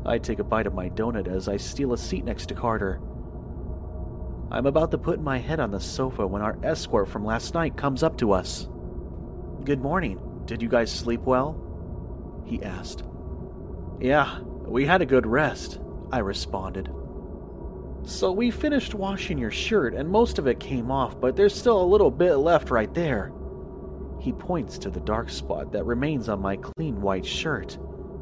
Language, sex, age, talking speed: English, male, 30-49, 180 wpm